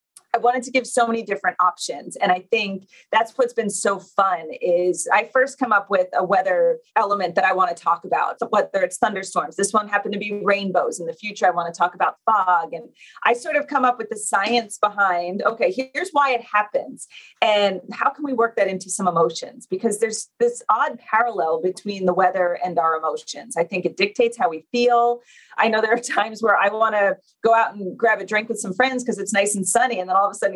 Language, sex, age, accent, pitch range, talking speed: English, female, 30-49, American, 185-250 Hz, 235 wpm